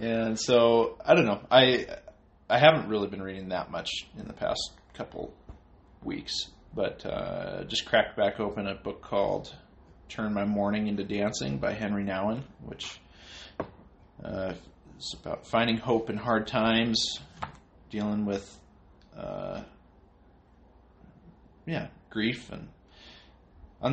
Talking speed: 130 wpm